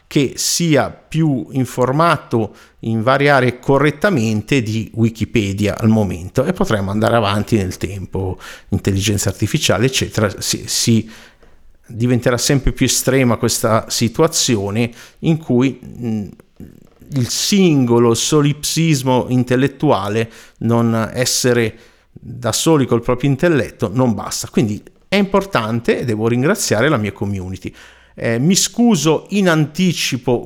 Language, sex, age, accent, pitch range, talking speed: Italian, male, 50-69, native, 110-140 Hz, 110 wpm